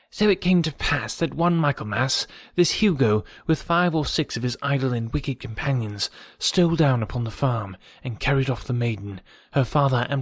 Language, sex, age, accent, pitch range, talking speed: English, male, 30-49, British, 120-150 Hz, 195 wpm